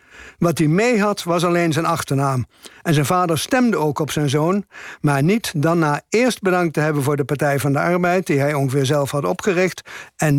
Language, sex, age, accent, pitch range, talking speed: Dutch, male, 60-79, Dutch, 150-180 Hz, 215 wpm